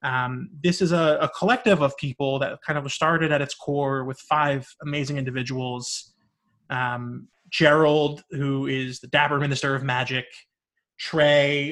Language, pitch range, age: English, 130-155 Hz, 20-39